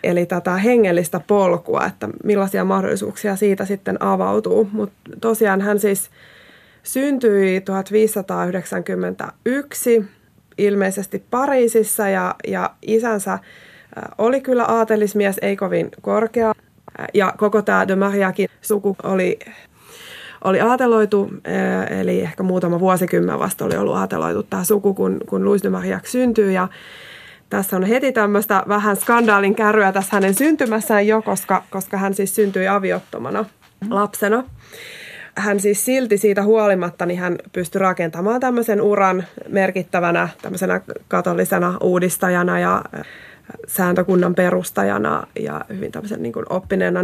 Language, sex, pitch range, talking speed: Finnish, female, 185-220 Hz, 120 wpm